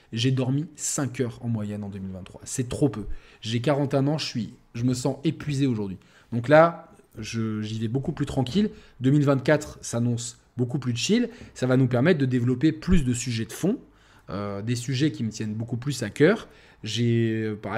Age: 20-39